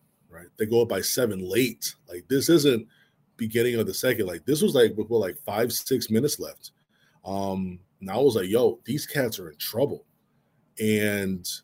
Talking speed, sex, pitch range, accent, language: 185 wpm, male, 105-125 Hz, American, English